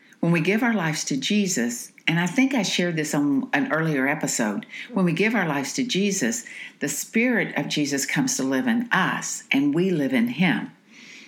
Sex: female